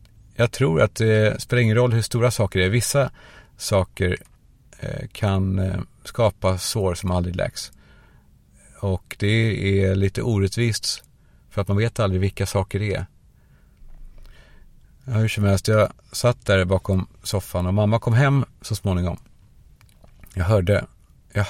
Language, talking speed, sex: Swedish, 135 wpm, male